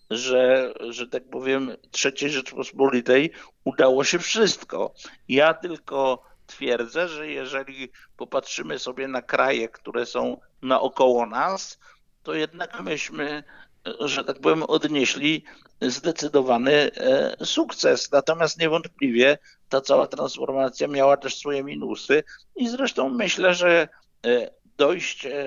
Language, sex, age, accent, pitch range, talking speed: Polish, male, 50-69, native, 135-170 Hz, 105 wpm